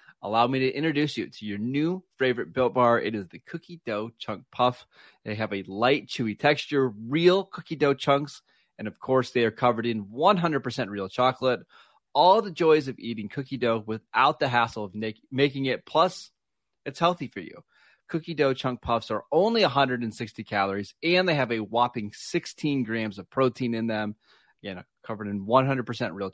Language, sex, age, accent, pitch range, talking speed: English, male, 30-49, American, 110-140 Hz, 180 wpm